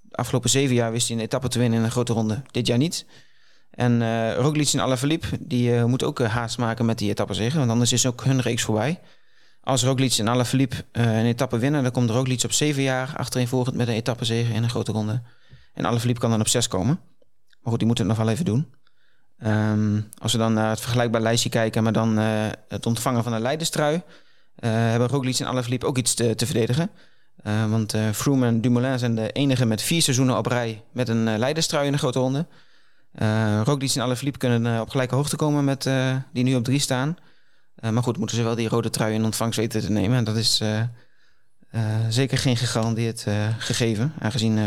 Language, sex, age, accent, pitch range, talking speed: Dutch, male, 30-49, Dutch, 115-130 Hz, 225 wpm